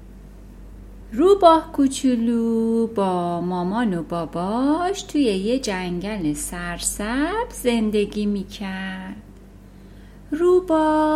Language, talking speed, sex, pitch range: Persian, 70 wpm, female, 205-310 Hz